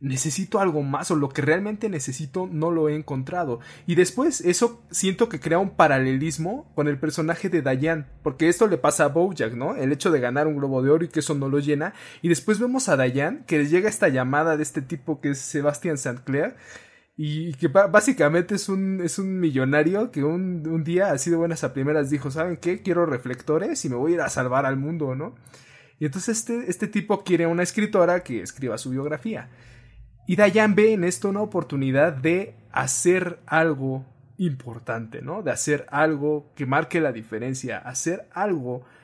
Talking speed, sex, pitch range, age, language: 200 wpm, male, 135-180 Hz, 20-39, Spanish